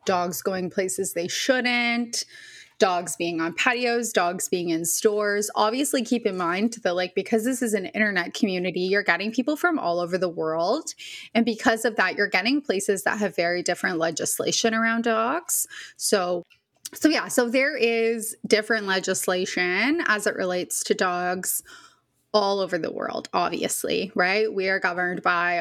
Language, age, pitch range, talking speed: English, 20-39, 180-235 Hz, 165 wpm